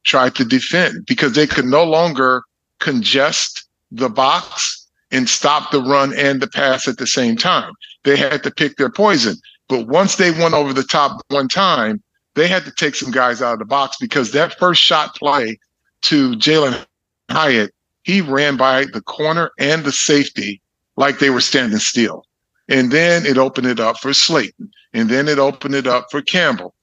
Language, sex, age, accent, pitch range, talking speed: English, male, 40-59, American, 130-160 Hz, 190 wpm